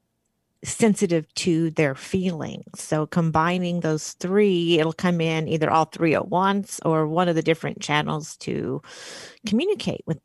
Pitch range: 155-195 Hz